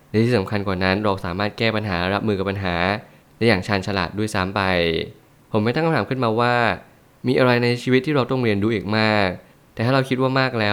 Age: 20-39